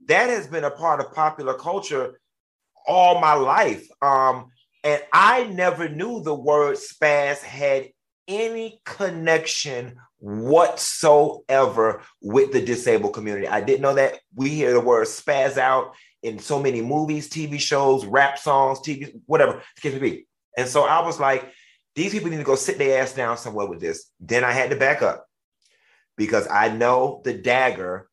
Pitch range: 135-165 Hz